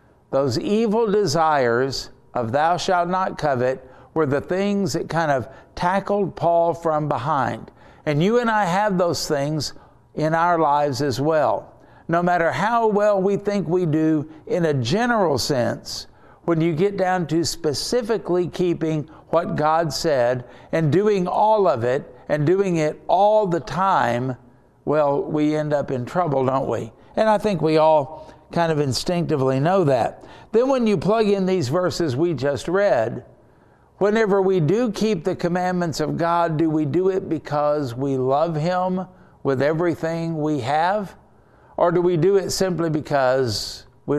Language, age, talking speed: English, 60-79, 160 wpm